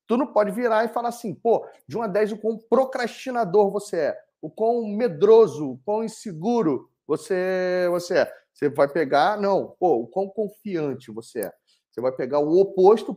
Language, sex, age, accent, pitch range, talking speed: Portuguese, male, 40-59, Brazilian, 155-215 Hz, 190 wpm